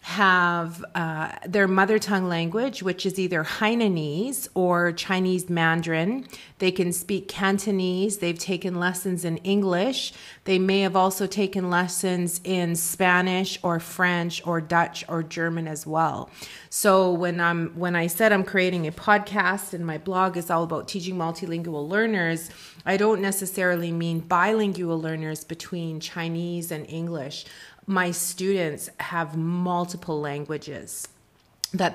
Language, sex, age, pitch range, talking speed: English, female, 30-49, 165-200 Hz, 135 wpm